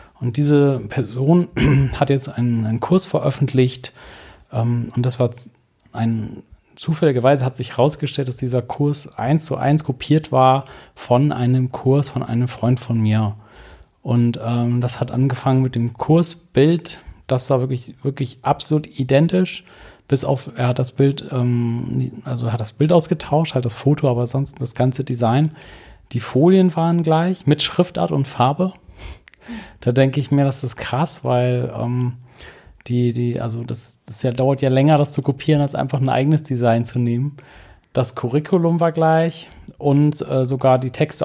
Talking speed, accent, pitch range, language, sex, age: 165 wpm, German, 120-145 Hz, German, male, 40-59